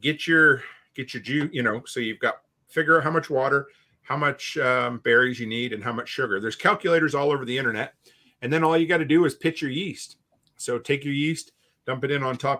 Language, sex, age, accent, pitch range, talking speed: English, male, 40-59, American, 125-160 Hz, 245 wpm